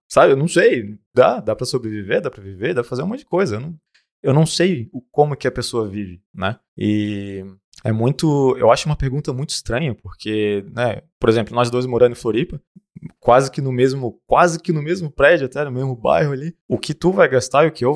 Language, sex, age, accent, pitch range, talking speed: Portuguese, male, 20-39, Brazilian, 110-140 Hz, 235 wpm